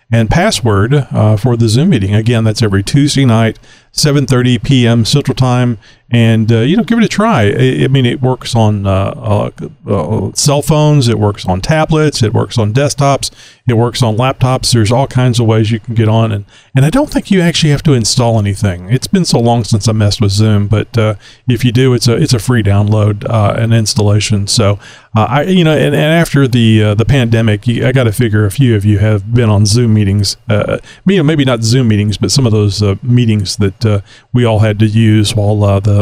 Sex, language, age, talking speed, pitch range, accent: male, English, 40-59, 235 wpm, 110-135 Hz, American